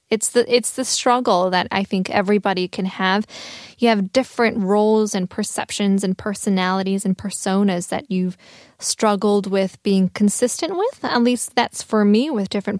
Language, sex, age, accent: Korean, female, 10-29, American